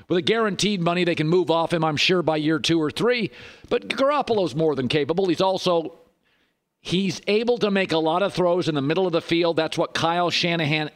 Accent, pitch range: American, 155-195 Hz